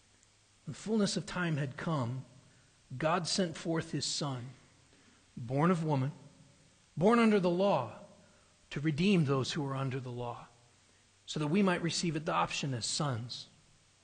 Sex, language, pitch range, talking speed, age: male, English, 120-200 Hz, 150 wpm, 40-59